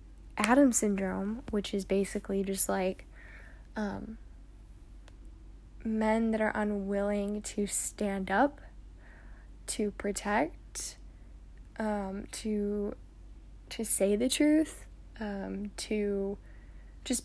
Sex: female